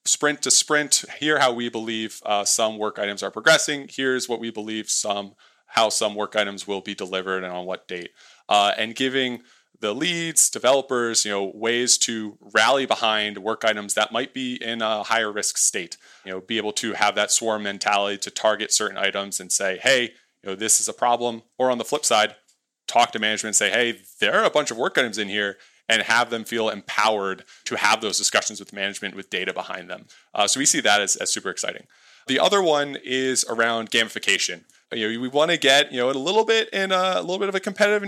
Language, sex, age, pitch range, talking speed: English, male, 20-39, 105-140 Hz, 225 wpm